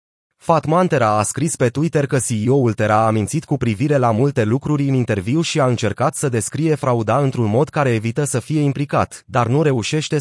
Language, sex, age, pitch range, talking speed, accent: Romanian, male, 30-49, 120-150 Hz, 195 wpm, native